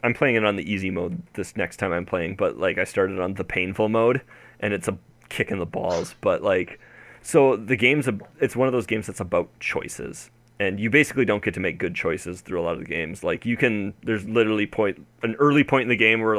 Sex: male